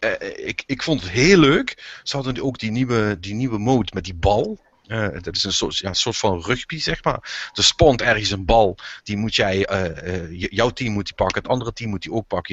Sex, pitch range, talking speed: male, 95-115 Hz, 255 wpm